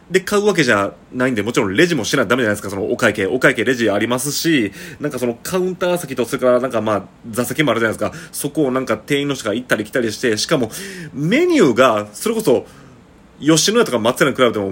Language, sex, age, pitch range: Japanese, male, 30-49, 115-170 Hz